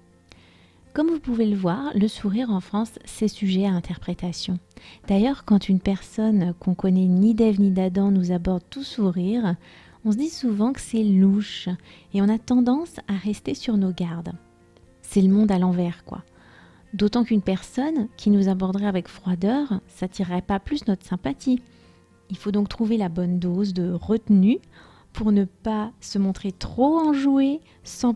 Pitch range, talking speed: 185-225 Hz, 170 wpm